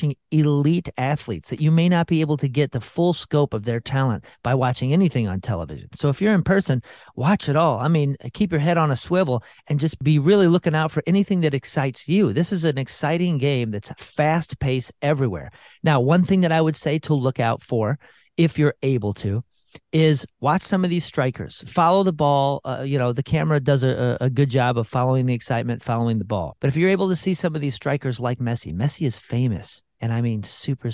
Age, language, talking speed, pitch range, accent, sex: 40-59, English, 225 wpm, 120-160 Hz, American, male